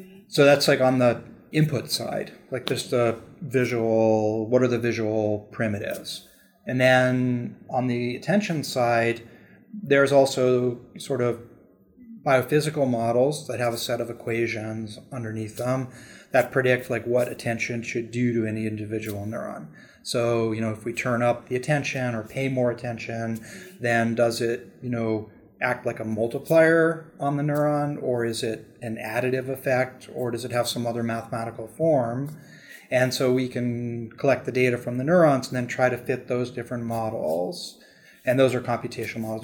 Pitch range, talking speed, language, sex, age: 115-130 Hz, 165 wpm, English, male, 30-49